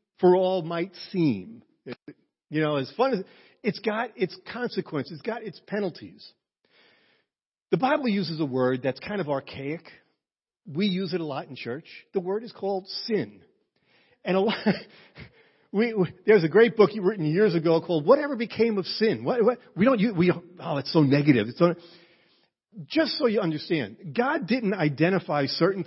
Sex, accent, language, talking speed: male, American, English, 165 wpm